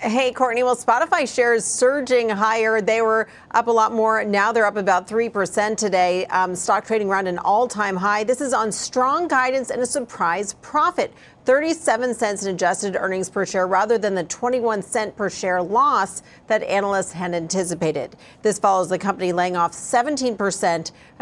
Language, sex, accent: English, female, American